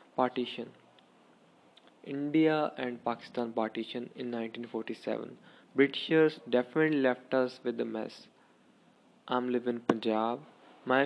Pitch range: 125-145 Hz